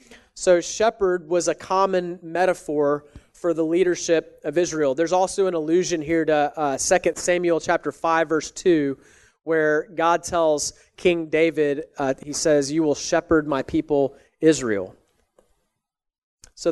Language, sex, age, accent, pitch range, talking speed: English, male, 30-49, American, 145-175 Hz, 140 wpm